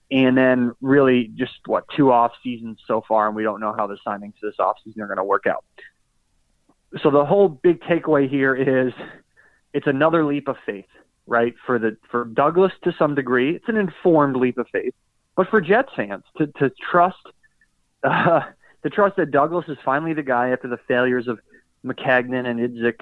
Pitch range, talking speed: 120-150 Hz, 195 wpm